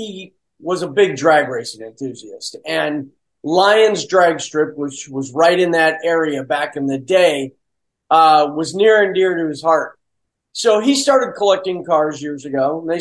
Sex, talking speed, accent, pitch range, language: male, 175 wpm, American, 150-195 Hz, English